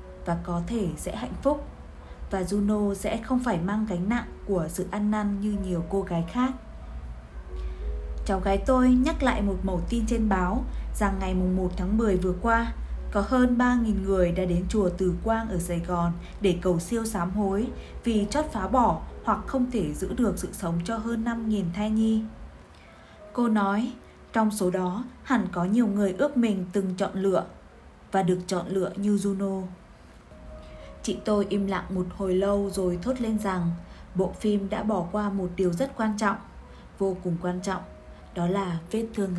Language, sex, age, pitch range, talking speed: Vietnamese, female, 20-39, 180-220 Hz, 185 wpm